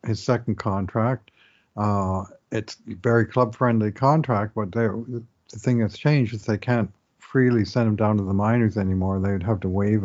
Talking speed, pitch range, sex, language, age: 165 wpm, 100-115 Hz, male, English, 50-69